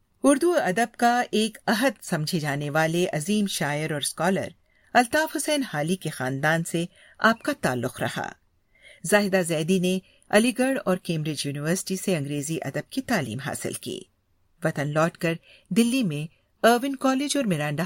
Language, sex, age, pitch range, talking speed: Urdu, female, 50-69, 155-230 Hz, 155 wpm